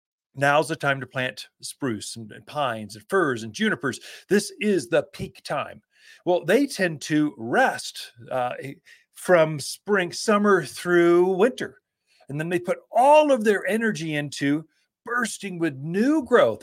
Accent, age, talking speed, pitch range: American, 40-59, 150 wpm, 135-205 Hz